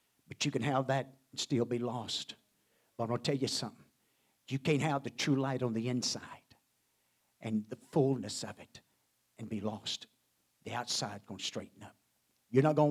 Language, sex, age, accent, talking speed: English, male, 60-79, American, 195 wpm